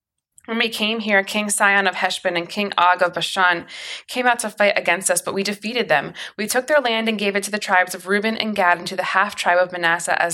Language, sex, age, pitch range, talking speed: English, female, 20-39, 180-215 Hz, 255 wpm